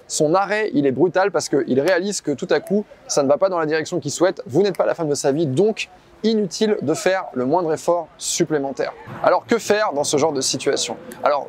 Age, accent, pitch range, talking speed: 20-39, French, 150-200 Hz, 240 wpm